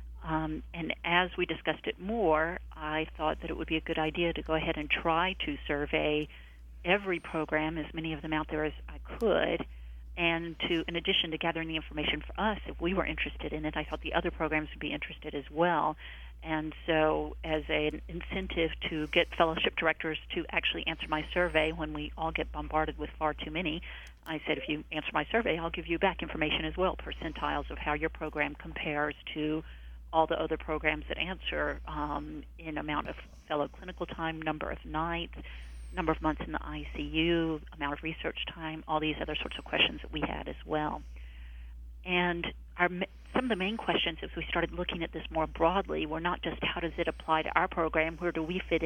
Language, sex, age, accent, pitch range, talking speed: English, female, 50-69, American, 150-170 Hz, 210 wpm